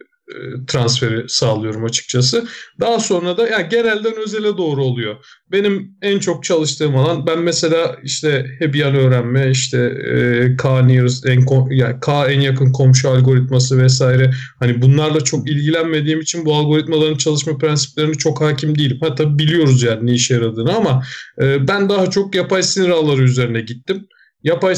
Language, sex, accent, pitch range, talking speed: Turkish, male, native, 130-185 Hz, 150 wpm